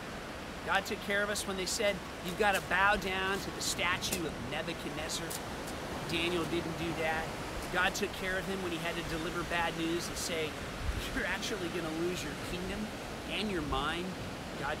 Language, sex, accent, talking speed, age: English, male, American, 190 wpm, 40-59